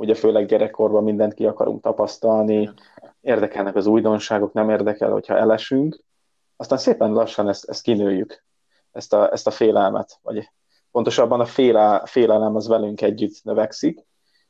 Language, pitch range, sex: Hungarian, 105-115 Hz, male